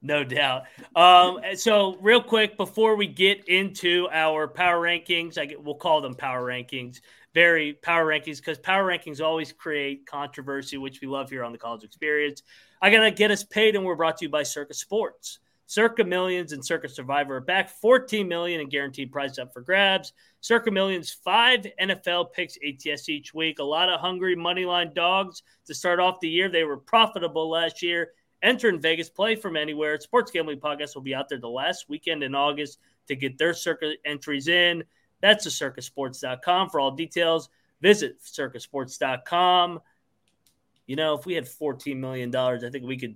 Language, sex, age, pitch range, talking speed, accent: English, male, 30-49, 140-180 Hz, 185 wpm, American